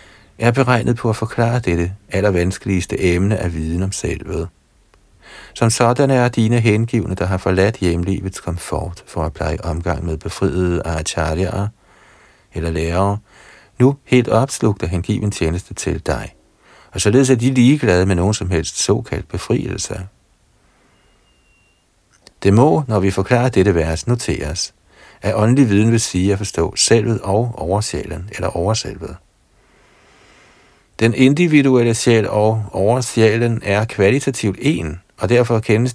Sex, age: male, 60-79